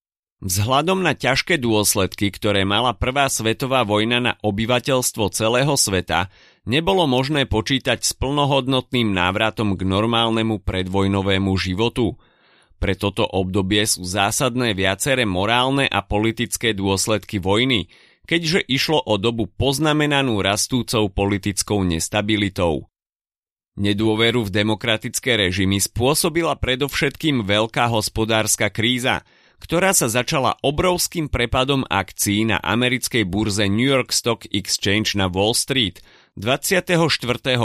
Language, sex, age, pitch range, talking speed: Slovak, male, 30-49, 100-135 Hz, 110 wpm